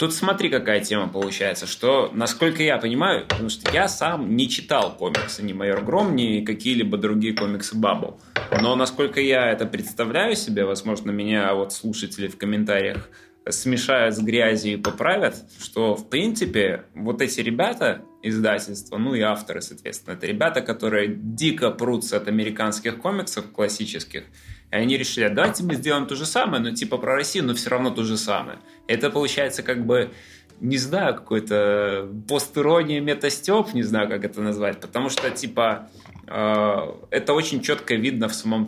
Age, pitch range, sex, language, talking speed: 20-39, 105-130 Hz, male, Russian, 160 wpm